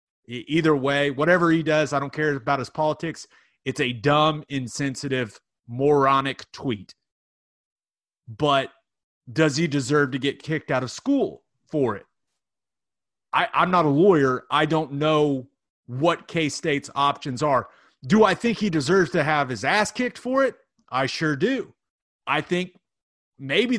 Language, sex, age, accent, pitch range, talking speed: English, male, 30-49, American, 135-175 Hz, 145 wpm